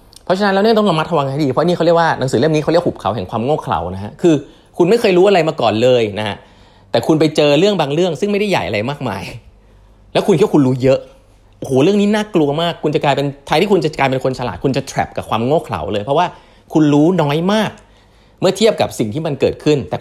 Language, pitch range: Thai, 105-165 Hz